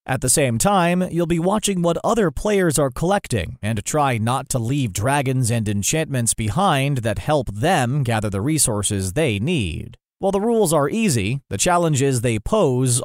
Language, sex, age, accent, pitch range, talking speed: English, male, 30-49, American, 120-170 Hz, 175 wpm